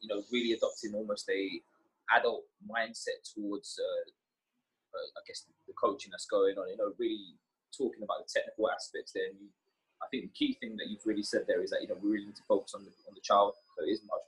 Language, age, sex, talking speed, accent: English, 20-39, male, 245 wpm, British